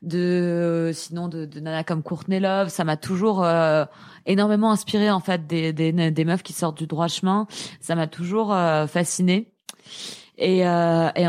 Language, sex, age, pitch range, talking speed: French, female, 20-39, 165-195 Hz, 175 wpm